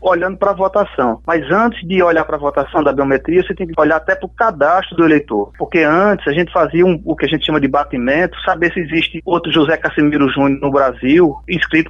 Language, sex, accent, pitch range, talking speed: Portuguese, male, Brazilian, 145-190 Hz, 230 wpm